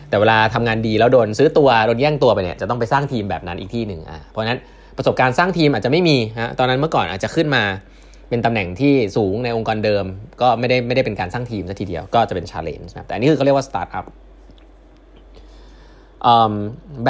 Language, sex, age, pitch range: Thai, male, 20-39, 105-140 Hz